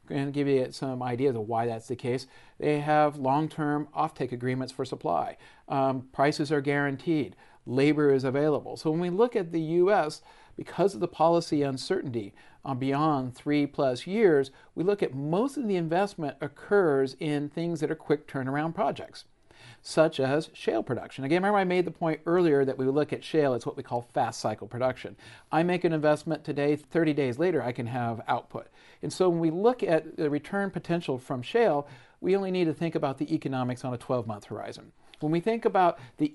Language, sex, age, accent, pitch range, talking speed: English, male, 50-69, American, 130-165 Hz, 200 wpm